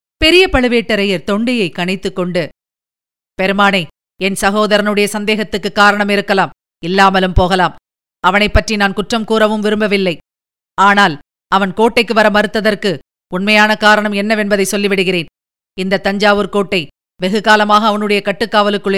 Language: Tamil